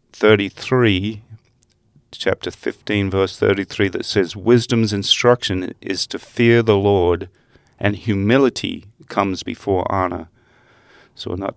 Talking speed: 110 wpm